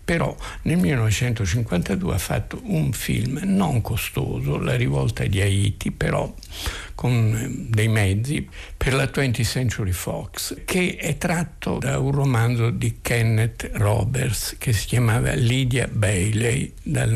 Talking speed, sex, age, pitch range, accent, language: 130 wpm, male, 60-79, 105-125 Hz, native, Italian